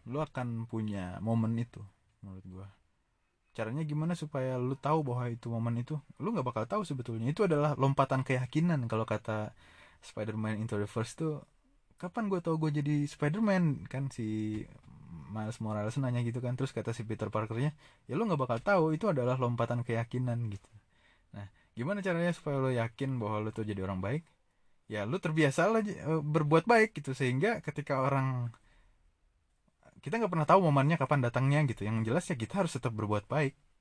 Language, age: Indonesian, 20-39